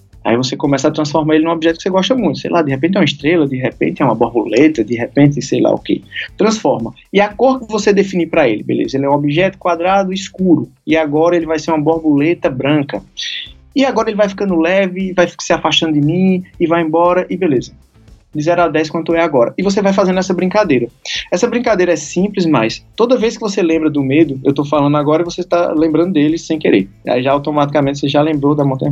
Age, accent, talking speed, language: 20-39, Brazilian, 235 wpm, Portuguese